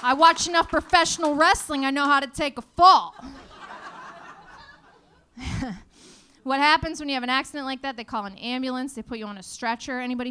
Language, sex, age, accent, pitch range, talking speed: English, female, 20-39, American, 215-280 Hz, 185 wpm